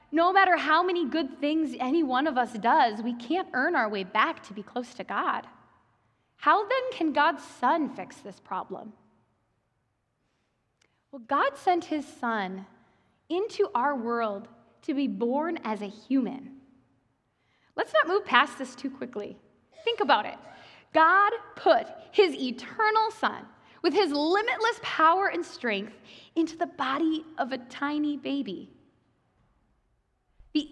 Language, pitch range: English, 235-325 Hz